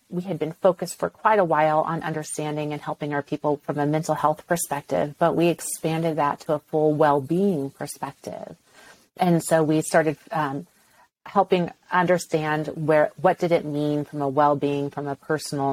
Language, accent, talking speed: English, American, 175 wpm